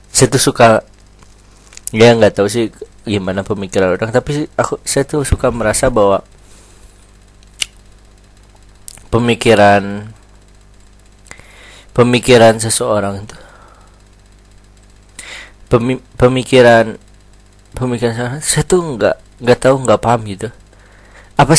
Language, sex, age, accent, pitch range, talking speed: Indonesian, male, 20-39, native, 105-125 Hz, 90 wpm